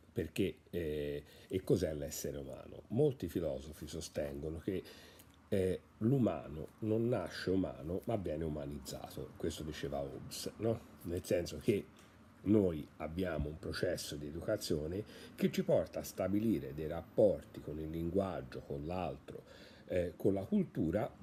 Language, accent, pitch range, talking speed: Italian, native, 80-115 Hz, 125 wpm